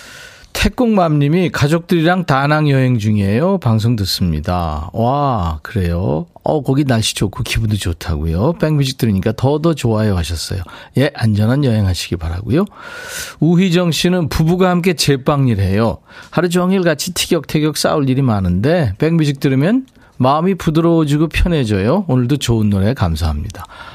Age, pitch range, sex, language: 40-59, 105-165 Hz, male, Korean